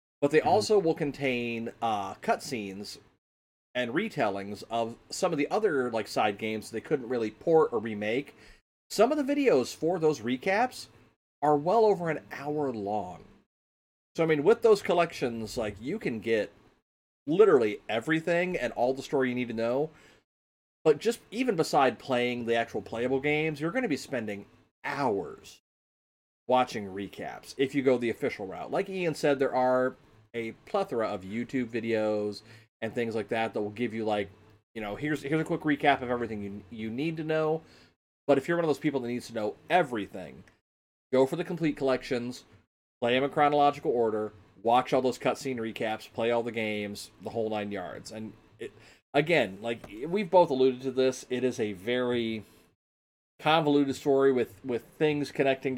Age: 30-49